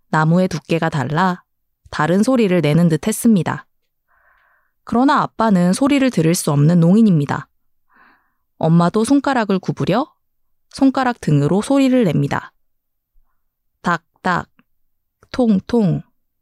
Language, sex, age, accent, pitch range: Korean, female, 20-39, native, 160-235 Hz